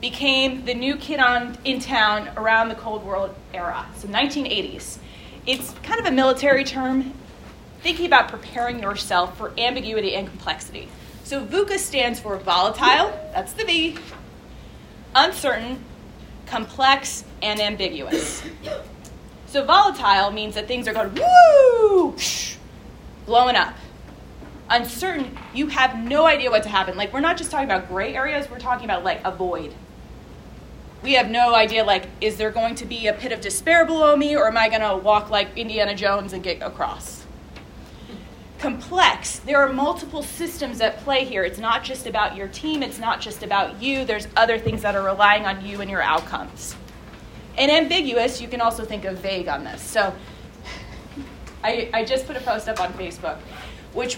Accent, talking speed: American, 165 wpm